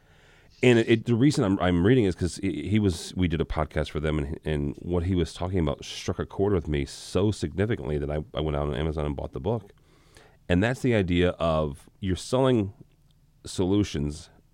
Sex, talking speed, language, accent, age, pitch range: male, 215 wpm, English, American, 40-59, 85-115 Hz